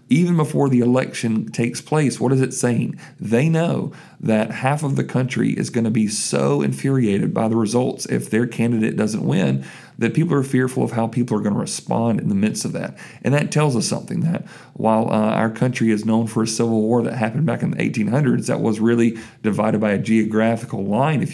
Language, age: English, 40-59